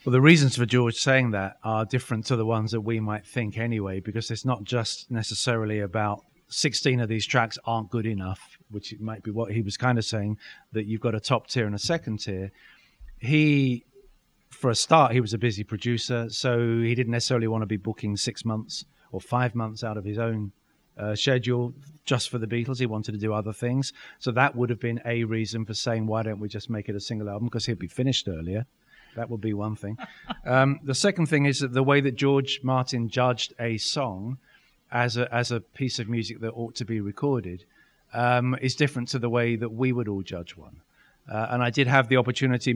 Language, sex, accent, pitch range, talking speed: English, male, British, 110-125 Hz, 225 wpm